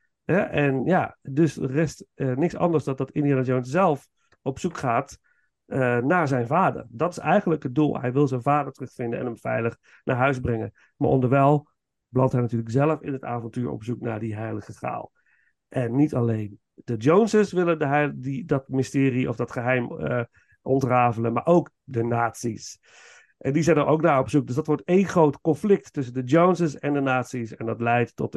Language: Dutch